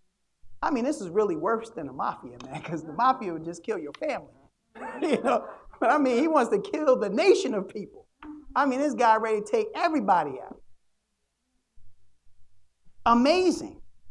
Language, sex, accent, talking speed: English, male, American, 165 wpm